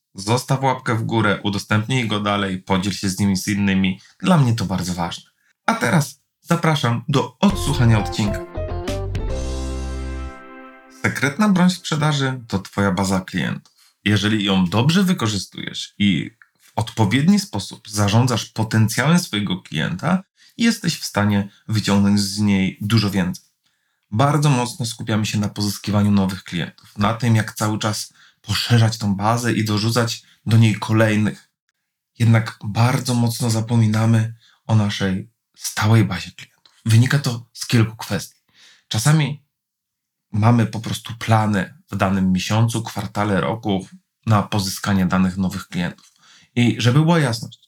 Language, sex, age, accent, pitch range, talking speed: Polish, male, 30-49, native, 100-125 Hz, 130 wpm